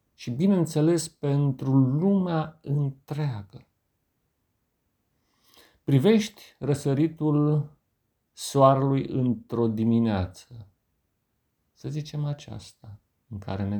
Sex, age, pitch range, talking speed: male, 50-69, 105-140 Hz, 70 wpm